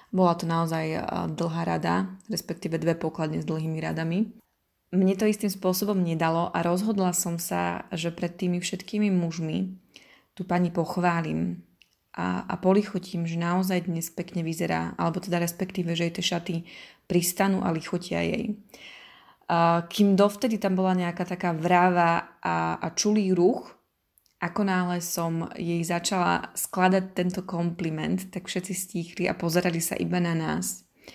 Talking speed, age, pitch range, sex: 145 wpm, 20-39, 170-190 Hz, female